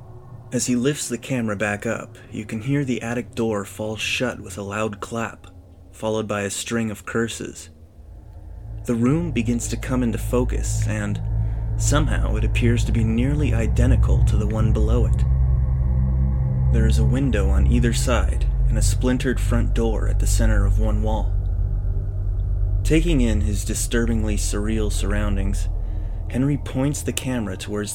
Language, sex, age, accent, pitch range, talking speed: English, male, 30-49, American, 100-115 Hz, 160 wpm